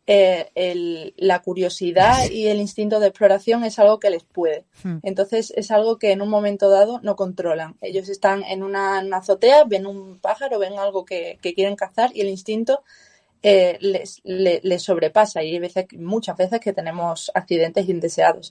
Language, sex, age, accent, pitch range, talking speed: Spanish, female, 20-39, Spanish, 185-215 Hz, 175 wpm